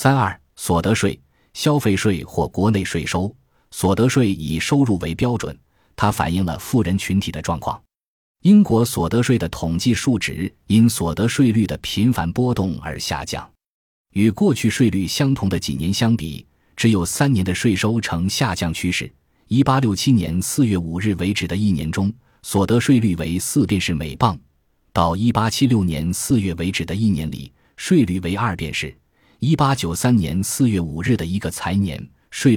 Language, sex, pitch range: Chinese, male, 85-115 Hz